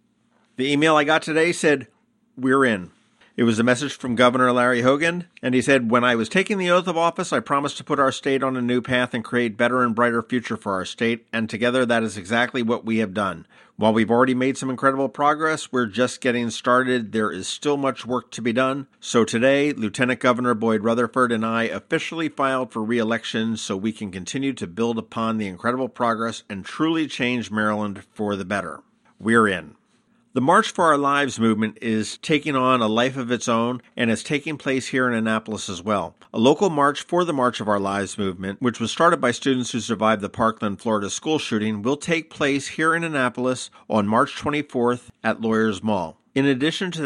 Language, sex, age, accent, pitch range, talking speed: English, male, 50-69, American, 110-140 Hz, 210 wpm